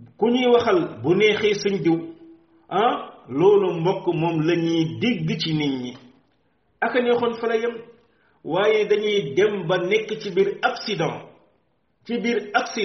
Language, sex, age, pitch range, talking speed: French, male, 50-69, 160-205 Hz, 70 wpm